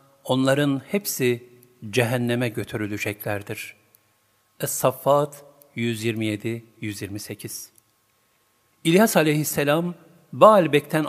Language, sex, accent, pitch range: Turkish, male, native, 110-160 Hz